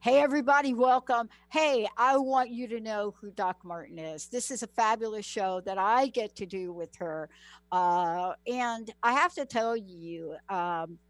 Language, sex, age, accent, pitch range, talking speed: English, female, 60-79, American, 185-260 Hz, 180 wpm